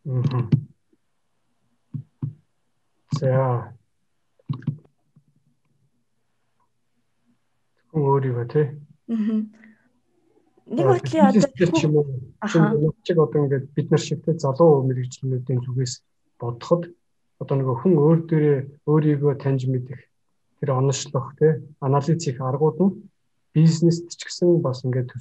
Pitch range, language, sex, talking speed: 120-150 Hz, Russian, male, 60 wpm